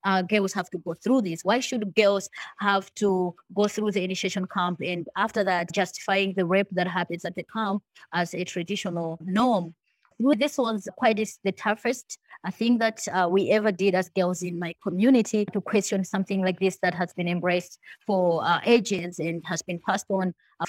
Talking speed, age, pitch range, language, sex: 195 wpm, 20-39, 180-215 Hz, English, female